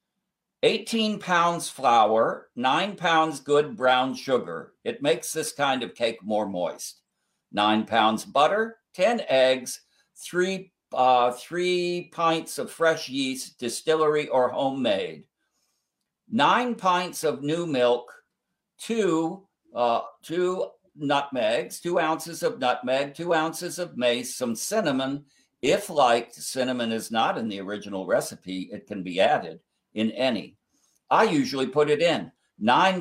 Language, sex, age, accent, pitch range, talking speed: English, male, 60-79, American, 125-170 Hz, 130 wpm